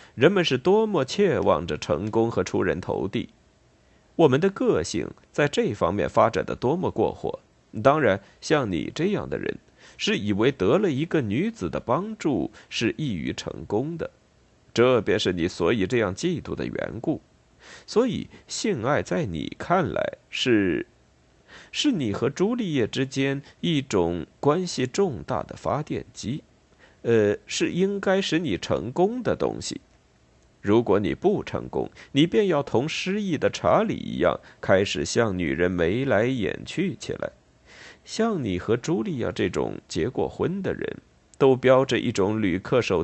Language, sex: Chinese, male